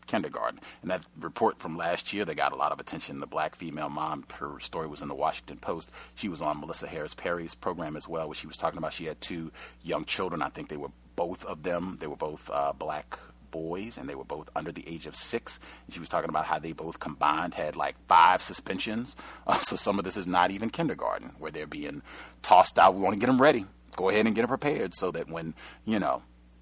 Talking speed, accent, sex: 245 wpm, American, male